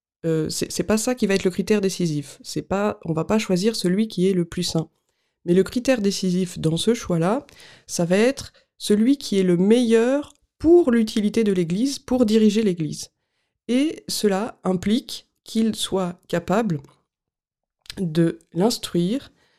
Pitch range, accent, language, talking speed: 170-225 Hz, French, French, 160 wpm